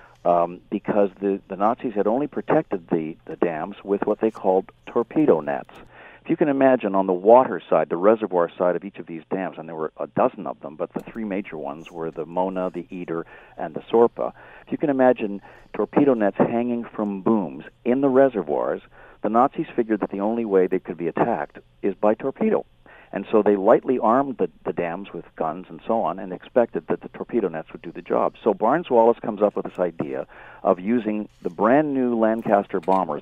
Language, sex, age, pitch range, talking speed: English, male, 50-69, 85-110 Hz, 210 wpm